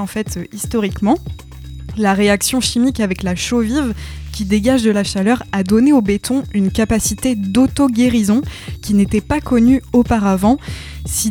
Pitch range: 200-250 Hz